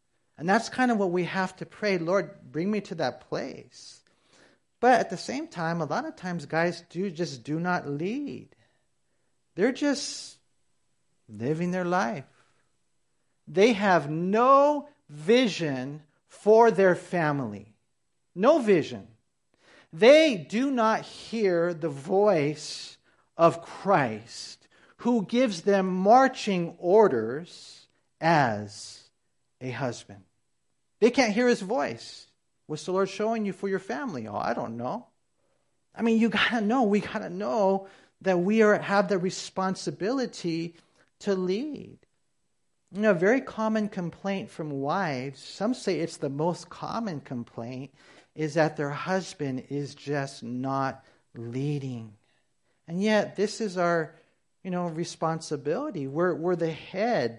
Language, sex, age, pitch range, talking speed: English, male, 50-69, 150-210 Hz, 135 wpm